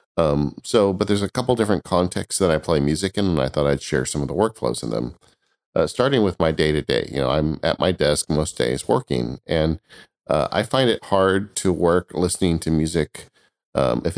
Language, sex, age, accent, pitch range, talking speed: English, male, 40-59, American, 70-90 Hz, 225 wpm